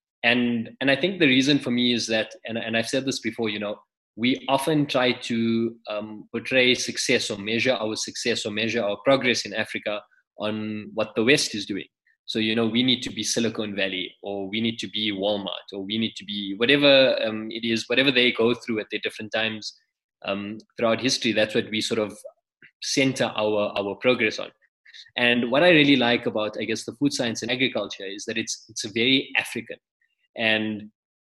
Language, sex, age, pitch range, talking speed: English, male, 20-39, 110-125 Hz, 205 wpm